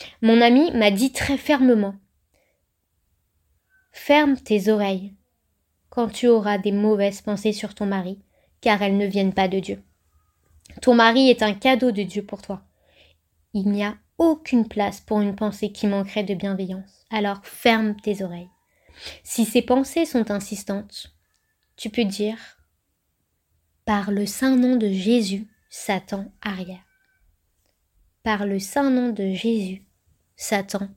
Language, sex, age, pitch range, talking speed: French, female, 20-39, 195-250 Hz, 140 wpm